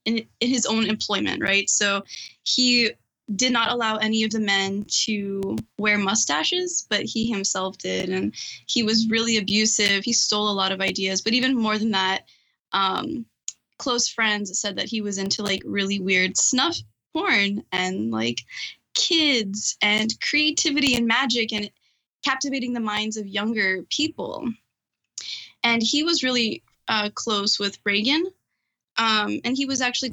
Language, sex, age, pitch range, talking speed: English, female, 10-29, 205-240 Hz, 155 wpm